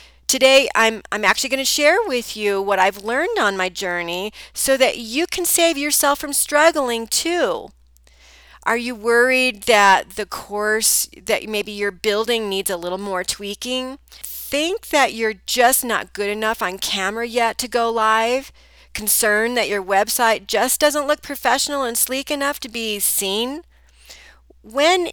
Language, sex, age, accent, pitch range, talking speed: English, female, 40-59, American, 190-260 Hz, 160 wpm